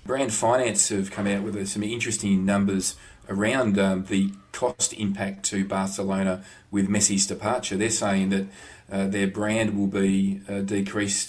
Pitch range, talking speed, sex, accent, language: 100-110 Hz, 155 wpm, male, Australian, English